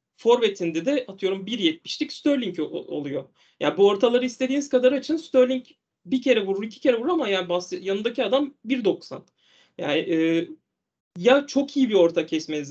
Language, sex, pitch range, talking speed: Turkish, male, 175-250 Hz, 165 wpm